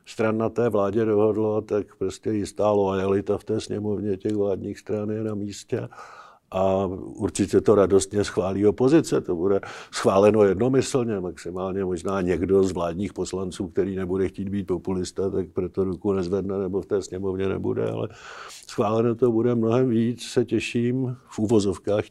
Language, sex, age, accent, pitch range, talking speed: Czech, male, 50-69, native, 100-115 Hz, 155 wpm